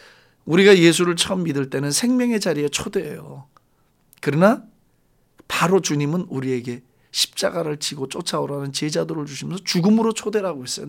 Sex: male